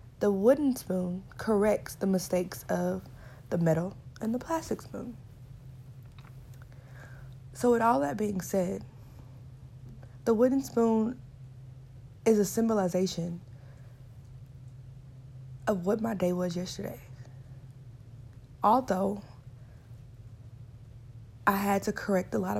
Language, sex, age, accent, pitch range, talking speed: English, female, 20-39, American, 125-190 Hz, 100 wpm